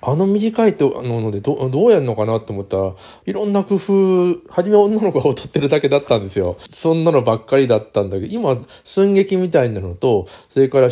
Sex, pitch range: male, 105-145 Hz